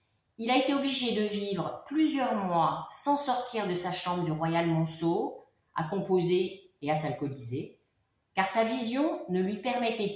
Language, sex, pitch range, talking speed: French, female, 155-220 Hz, 160 wpm